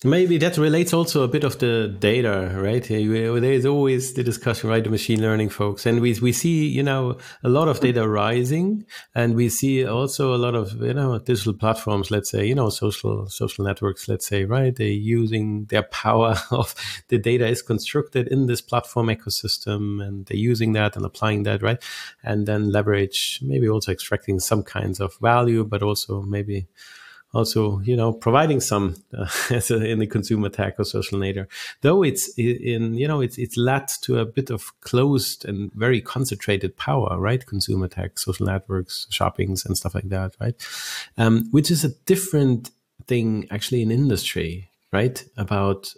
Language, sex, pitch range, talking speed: English, male, 105-130 Hz, 180 wpm